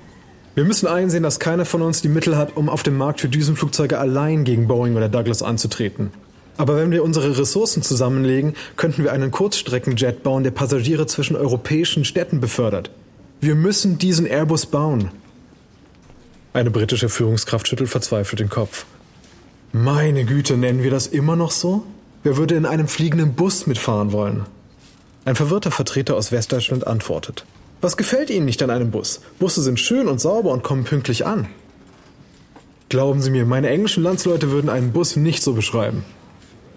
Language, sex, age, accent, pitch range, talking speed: German, male, 20-39, German, 120-155 Hz, 165 wpm